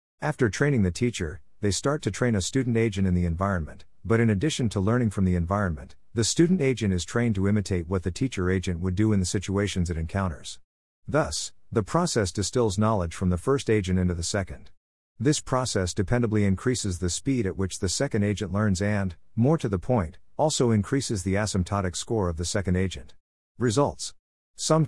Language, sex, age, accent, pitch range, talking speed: English, male, 50-69, American, 90-115 Hz, 195 wpm